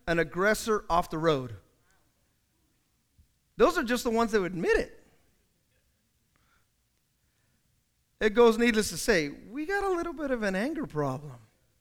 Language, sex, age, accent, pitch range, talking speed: English, male, 30-49, American, 220-310 Hz, 140 wpm